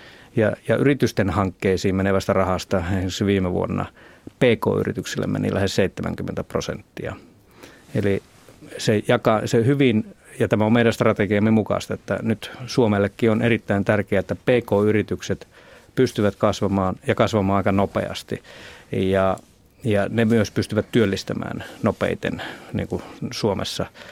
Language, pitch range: Finnish, 100-115 Hz